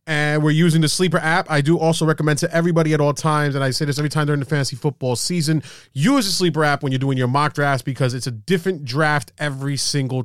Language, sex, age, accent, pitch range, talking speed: English, male, 30-49, American, 125-165 Hz, 250 wpm